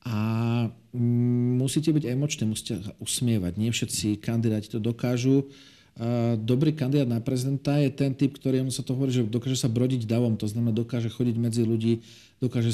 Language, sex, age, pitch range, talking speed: Slovak, male, 40-59, 115-130 Hz, 160 wpm